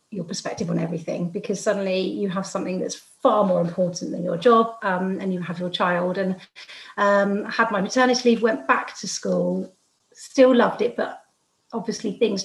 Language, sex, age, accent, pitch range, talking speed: English, female, 30-49, British, 180-220 Hz, 190 wpm